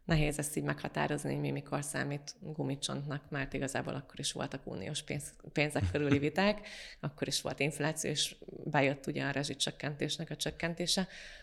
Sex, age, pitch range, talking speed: female, 30-49, 145-160 Hz, 145 wpm